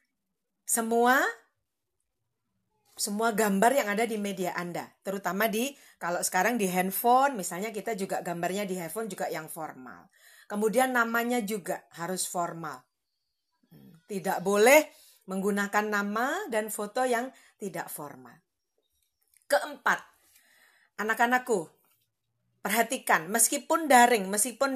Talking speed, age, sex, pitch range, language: 105 wpm, 40-59, female, 195-260 Hz, Indonesian